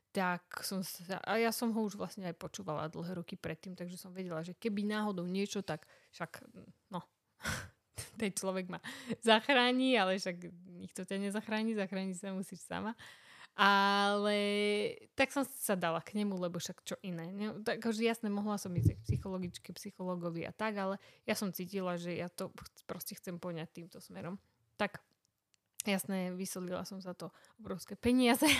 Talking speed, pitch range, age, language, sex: 165 wpm, 180-215 Hz, 20-39, Slovak, female